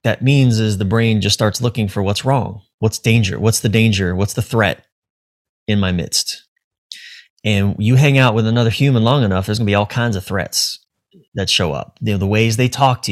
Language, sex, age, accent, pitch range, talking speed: English, male, 30-49, American, 100-125 Hz, 220 wpm